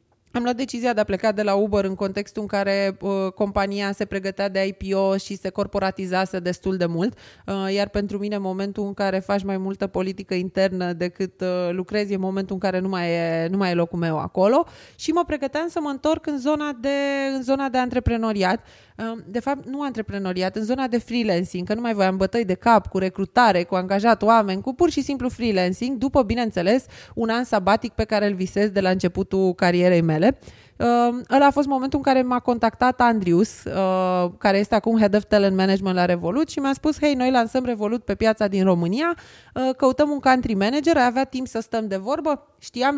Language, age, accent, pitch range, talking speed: Romanian, 20-39, native, 195-260 Hz, 210 wpm